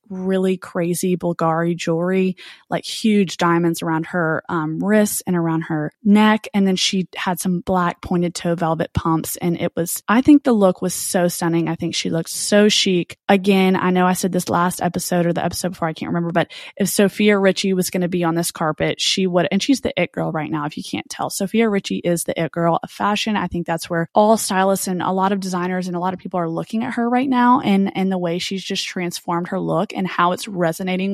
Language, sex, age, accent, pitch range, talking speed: English, female, 20-39, American, 170-205 Hz, 235 wpm